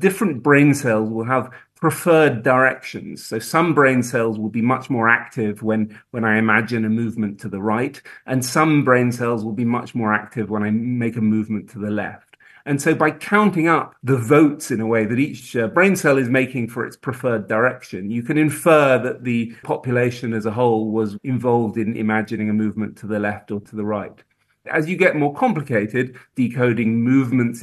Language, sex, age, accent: English, male, 40-59, British